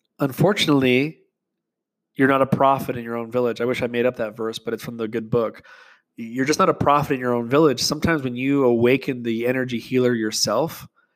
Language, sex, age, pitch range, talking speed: English, male, 20-39, 125-150 Hz, 210 wpm